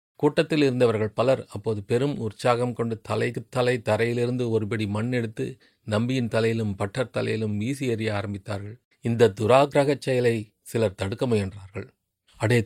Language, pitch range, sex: Tamil, 110-125 Hz, male